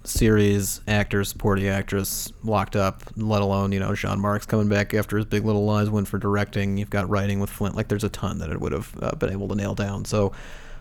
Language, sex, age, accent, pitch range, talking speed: English, male, 30-49, American, 100-110 Hz, 235 wpm